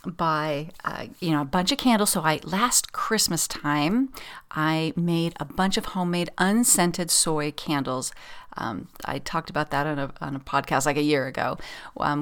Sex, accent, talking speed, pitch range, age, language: female, American, 175 wpm, 150-185 Hz, 40-59, English